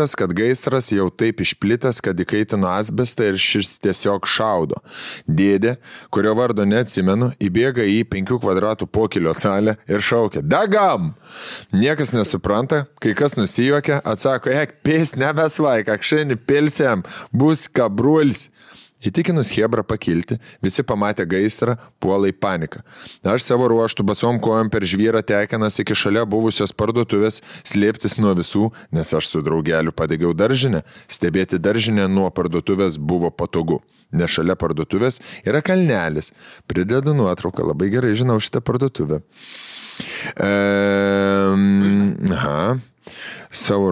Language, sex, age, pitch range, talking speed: English, male, 20-39, 100-135 Hz, 120 wpm